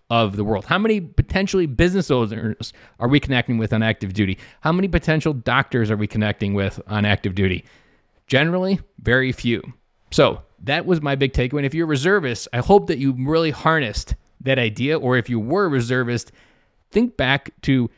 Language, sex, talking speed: English, male, 190 wpm